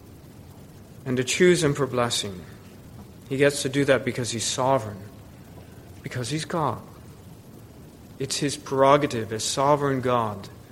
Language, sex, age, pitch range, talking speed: English, male, 40-59, 125-160 Hz, 130 wpm